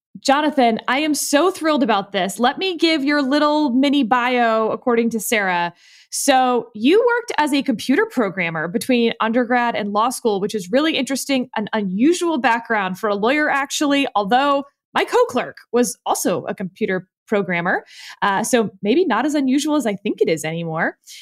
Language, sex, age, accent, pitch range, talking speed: English, female, 20-39, American, 205-285 Hz, 170 wpm